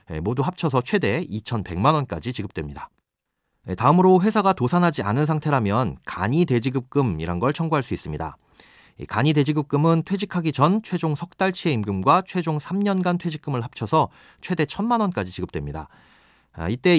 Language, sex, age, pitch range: Korean, male, 40-59, 110-170 Hz